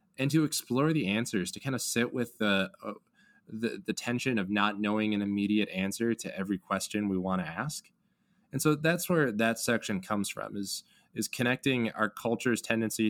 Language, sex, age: English, male, 20-39